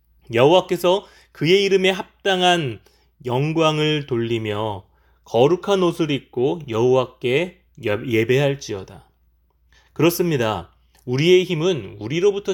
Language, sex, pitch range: Korean, male, 115-180 Hz